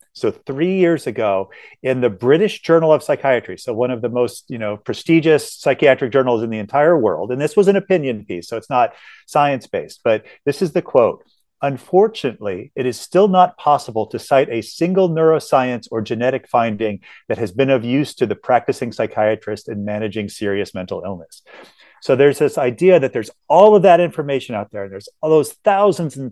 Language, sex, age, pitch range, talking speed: English, male, 40-59, 120-155 Hz, 195 wpm